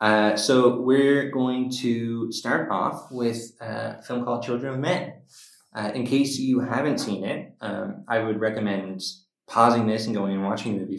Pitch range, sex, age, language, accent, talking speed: 105-125 Hz, male, 20-39, English, American, 180 wpm